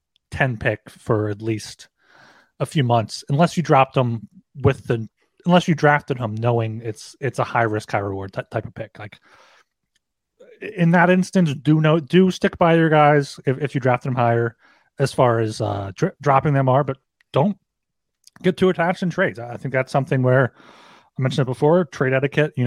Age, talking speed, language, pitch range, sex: 30-49, 195 wpm, English, 115-145 Hz, male